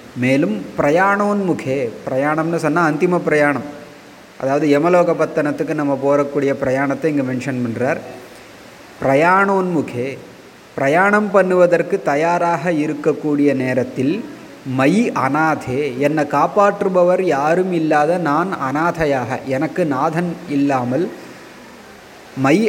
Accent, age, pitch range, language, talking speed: native, 30-49, 135-160 Hz, Tamil, 85 wpm